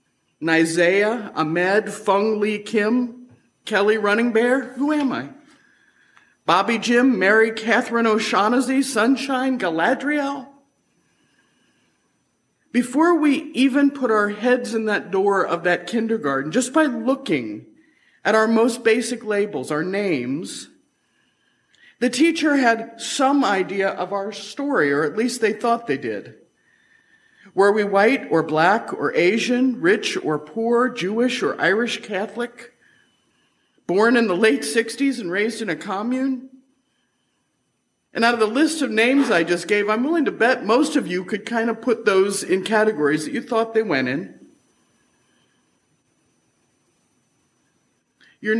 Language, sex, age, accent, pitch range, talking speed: English, male, 50-69, American, 200-255 Hz, 135 wpm